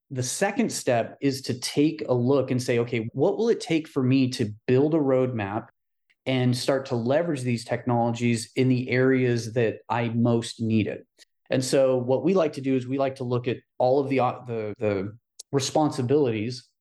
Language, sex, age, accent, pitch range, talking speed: English, male, 30-49, American, 120-145 Hz, 195 wpm